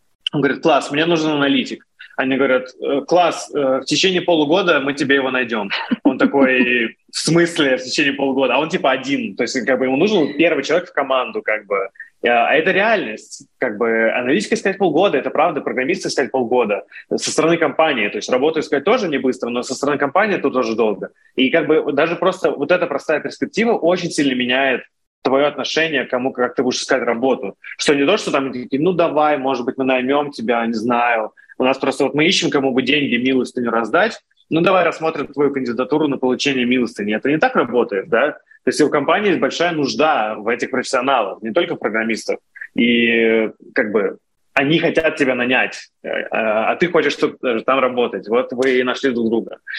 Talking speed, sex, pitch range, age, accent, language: 195 wpm, male, 125-150 Hz, 20-39, native, Russian